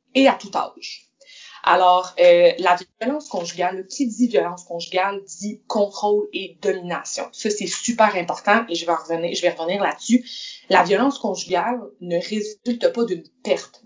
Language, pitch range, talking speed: French, 170-230 Hz, 160 wpm